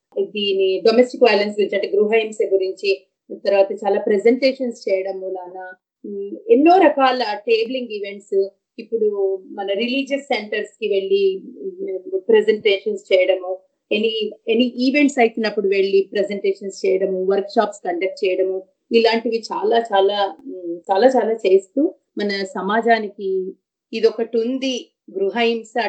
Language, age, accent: English, 30-49, Indian